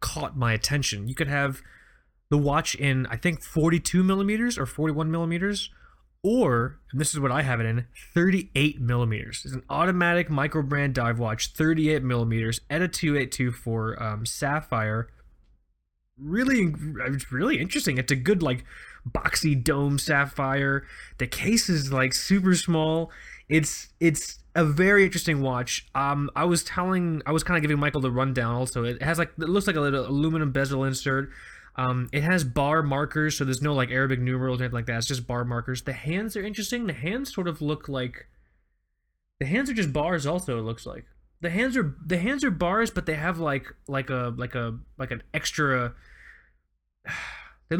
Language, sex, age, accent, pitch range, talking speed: English, male, 20-39, American, 130-165 Hz, 180 wpm